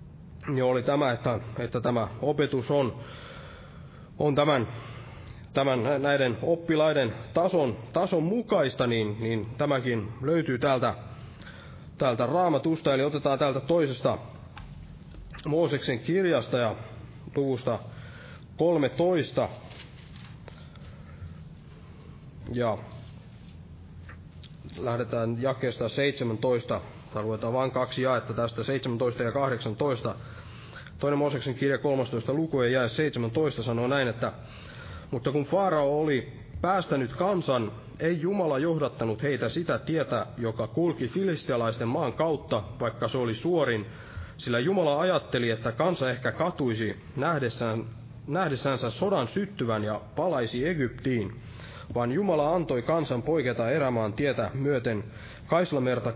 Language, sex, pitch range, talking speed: Finnish, male, 115-145 Hz, 105 wpm